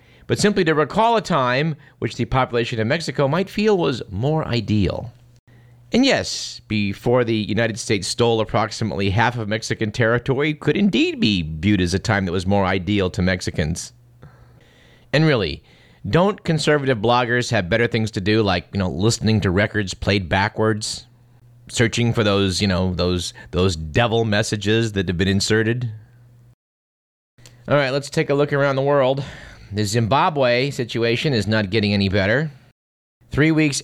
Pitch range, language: 105-130 Hz, English